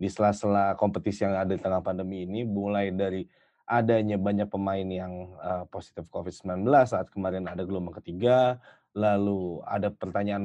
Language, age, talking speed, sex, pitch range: Indonesian, 20-39, 145 wpm, male, 95-120 Hz